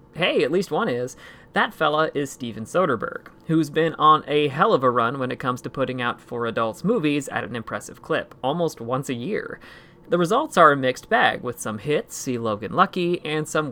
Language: English